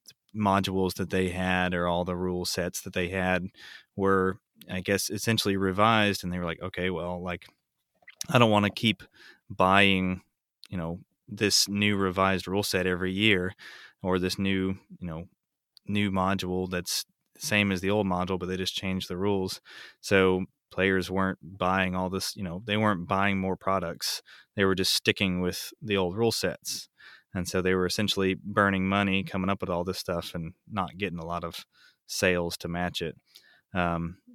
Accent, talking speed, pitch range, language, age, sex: American, 185 wpm, 90-105 Hz, English, 20-39, male